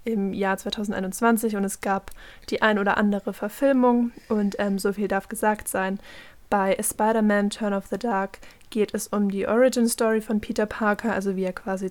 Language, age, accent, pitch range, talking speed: German, 20-39, German, 200-225 Hz, 185 wpm